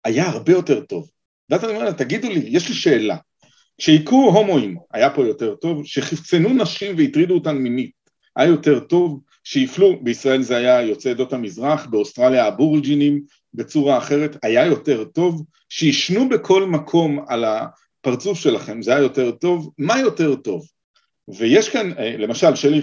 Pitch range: 140-210 Hz